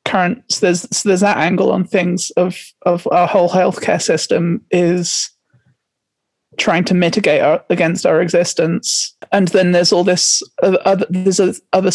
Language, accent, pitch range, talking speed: English, British, 175-195 Hz, 145 wpm